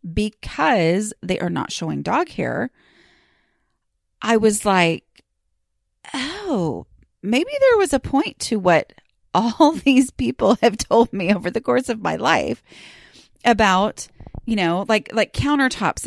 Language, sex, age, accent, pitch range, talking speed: English, female, 30-49, American, 180-280 Hz, 135 wpm